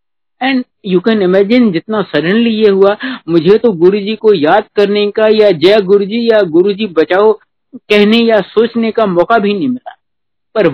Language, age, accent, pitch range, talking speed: Hindi, 60-79, native, 170-220 Hz, 185 wpm